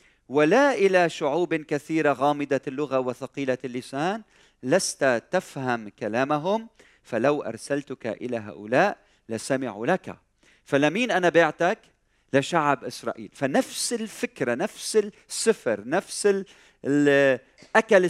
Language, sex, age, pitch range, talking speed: Arabic, male, 40-59, 125-175 Hz, 95 wpm